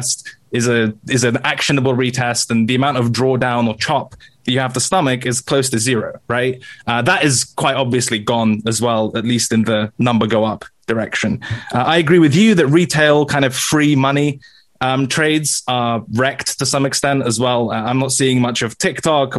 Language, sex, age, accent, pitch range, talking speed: English, male, 20-39, British, 120-140 Hz, 200 wpm